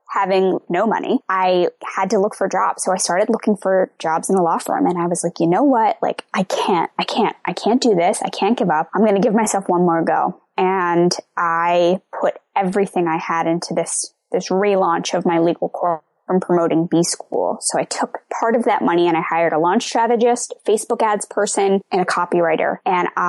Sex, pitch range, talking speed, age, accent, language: female, 175-205 Hz, 215 wpm, 10-29, American, English